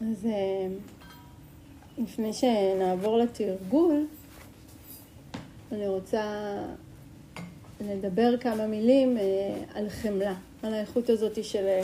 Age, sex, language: 40-59, female, Hebrew